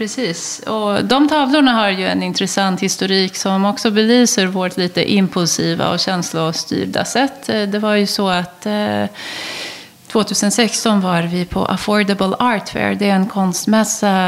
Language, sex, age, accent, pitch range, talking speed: Swedish, female, 30-49, native, 190-240 Hz, 145 wpm